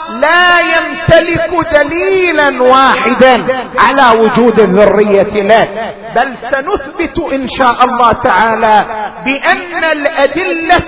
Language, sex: Arabic, male